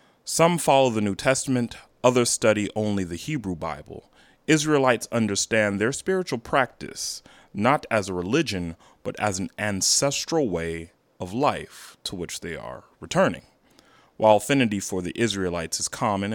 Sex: male